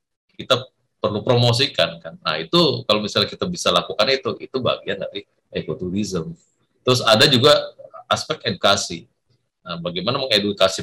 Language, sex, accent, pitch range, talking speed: Indonesian, male, native, 95-135 Hz, 135 wpm